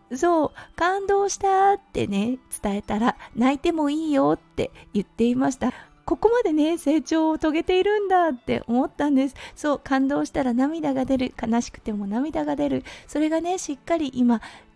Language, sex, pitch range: Japanese, female, 230-315 Hz